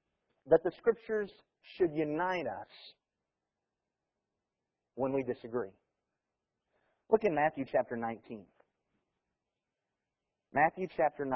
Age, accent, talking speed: 40-59, American, 85 wpm